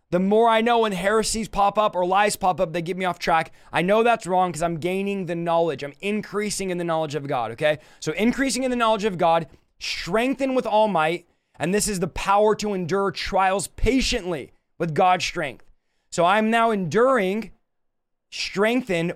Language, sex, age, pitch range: English, male, 20-39, 170-215 Hz